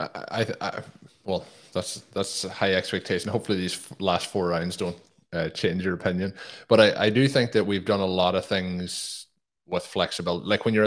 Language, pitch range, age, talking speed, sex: English, 90-100 Hz, 20-39, 195 wpm, male